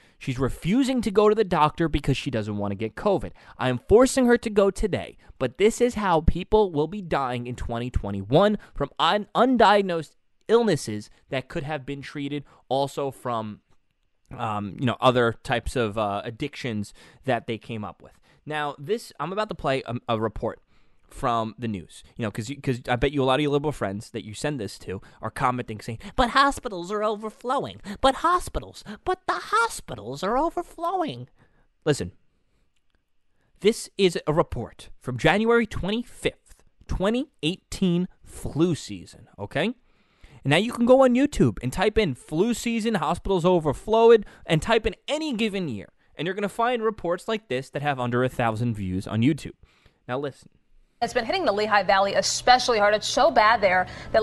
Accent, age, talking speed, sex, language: American, 20-39, 180 wpm, male, English